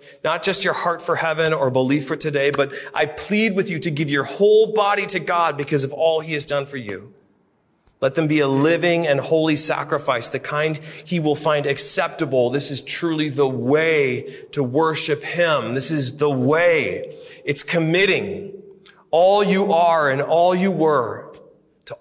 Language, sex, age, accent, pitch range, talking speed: English, male, 40-59, American, 130-170 Hz, 180 wpm